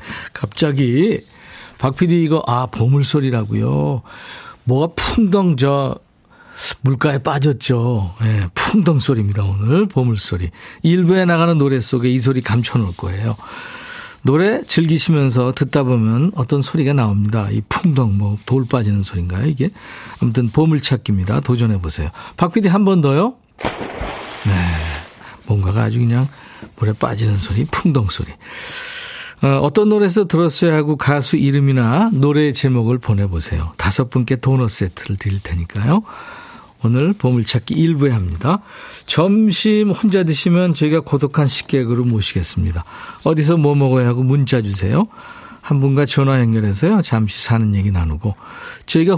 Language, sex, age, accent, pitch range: Korean, male, 50-69, native, 110-165 Hz